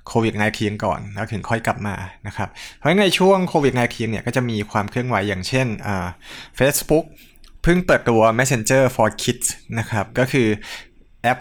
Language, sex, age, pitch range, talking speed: English, male, 20-39, 105-130 Hz, 55 wpm